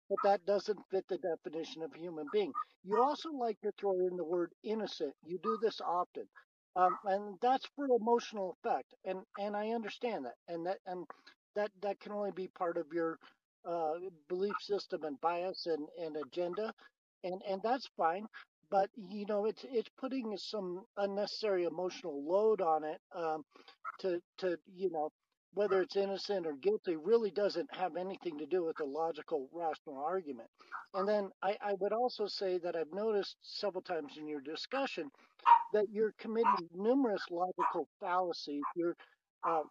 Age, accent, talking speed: 50-69, American, 170 wpm